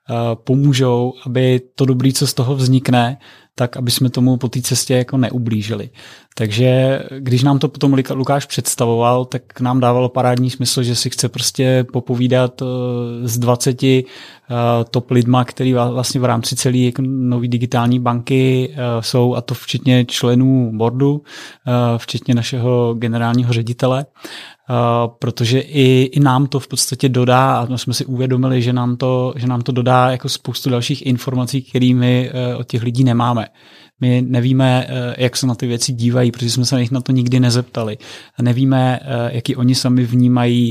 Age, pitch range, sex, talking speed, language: 20-39, 120-130 Hz, male, 165 wpm, Czech